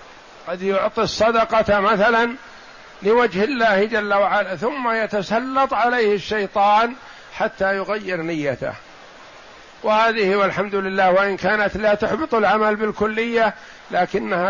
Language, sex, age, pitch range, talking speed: Arabic, male, 50-69, 180-220 Hz, 105 wpm